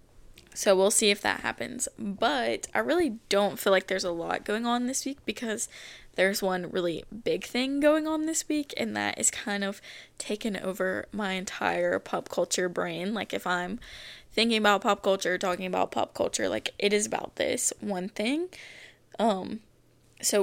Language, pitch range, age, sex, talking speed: English, 190-235 Hz, 10-29, female, 180 wpm